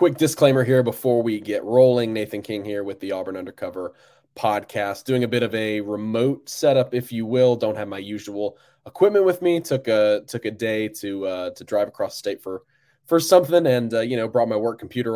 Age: 20-39